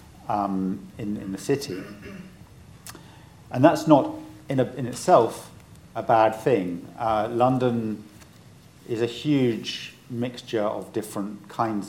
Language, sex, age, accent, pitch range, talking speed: English, male, 50-69, British, 100-125 Hz, 115 wpm